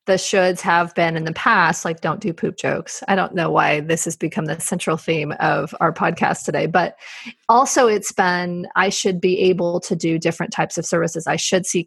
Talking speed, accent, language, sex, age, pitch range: 215 wpm, American, English, female, 30-49, 170-205 Hz